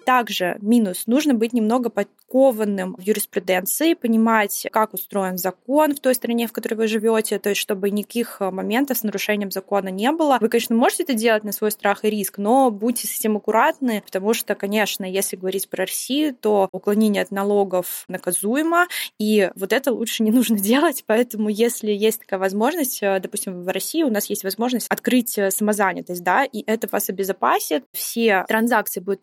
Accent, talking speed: native, 170 wpm